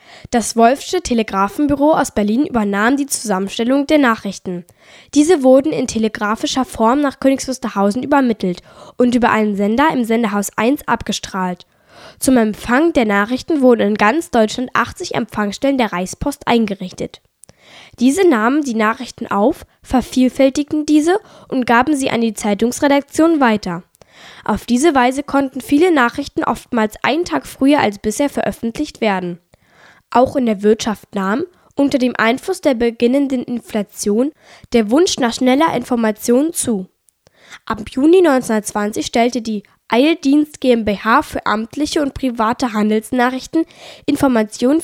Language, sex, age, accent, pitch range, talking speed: German, female, 10-29, German, 215-280 Hz, 130 wpm